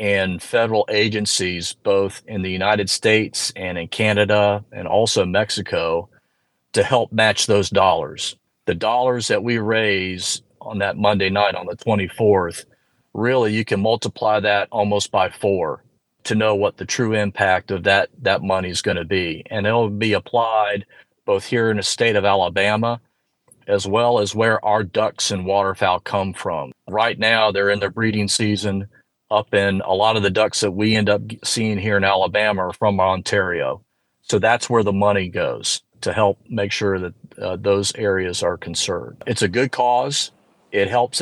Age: 40-59